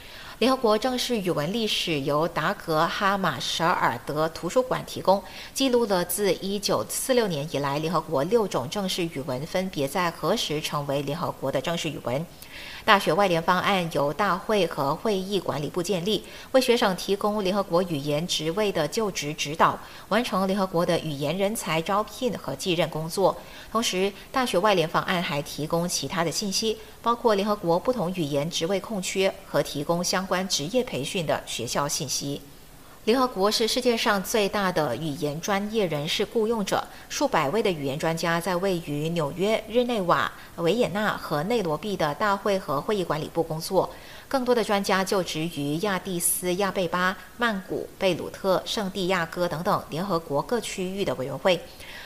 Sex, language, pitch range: female, English, 160-210 Hz